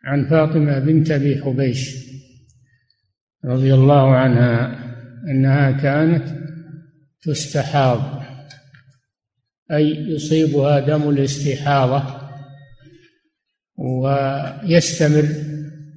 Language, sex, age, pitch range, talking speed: Arabic, male, 60-79, 135-150 Hz, 60 wpm